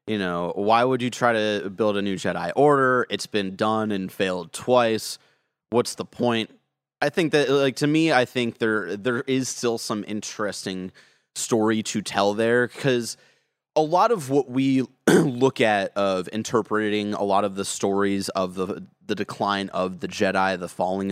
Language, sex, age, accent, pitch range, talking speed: English, male, 30-49, American, 95-125 Hz, 180 wpm